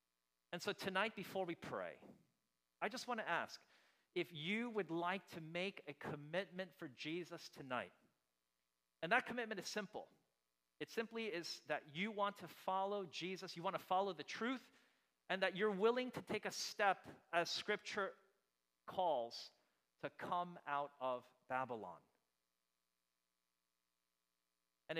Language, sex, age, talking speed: English, male, 40-59, 140 wpm